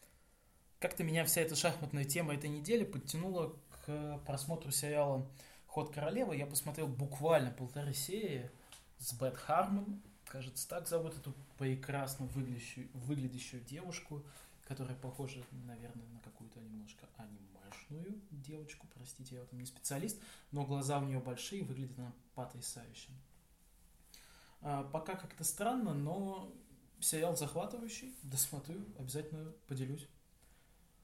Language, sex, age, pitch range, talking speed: Russian, male, 20-39, 125-155 Hz, 120 wpm